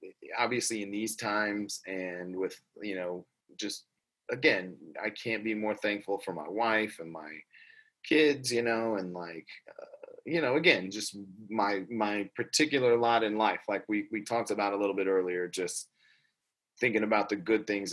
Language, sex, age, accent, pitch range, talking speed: English, male, 30-49, American, 95-115 Hz, 170 wpm